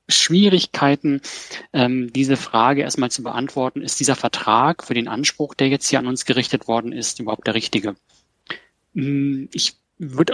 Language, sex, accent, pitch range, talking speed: German, male, German, 125-150 Hz, 145 wpm